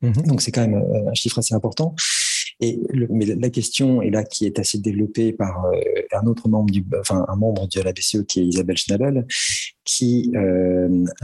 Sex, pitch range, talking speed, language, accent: male, 100-115 Hz, 190 wpm, French, French